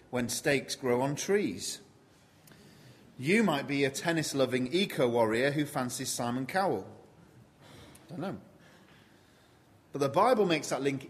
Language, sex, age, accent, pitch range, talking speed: English, male, 30-49, British, 115-145 Hz, 135 wpm